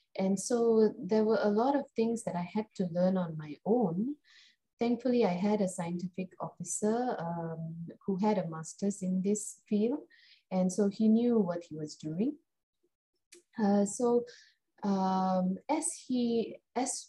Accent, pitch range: Indian, 170-215 Hz